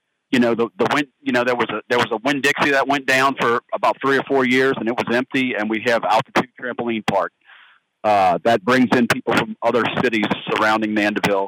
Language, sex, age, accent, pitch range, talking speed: English, male, 40-59, American, 105-125 Hz, 220 wpm